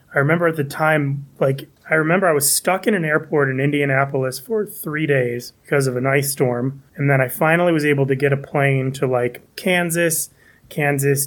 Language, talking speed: English, 200 wpm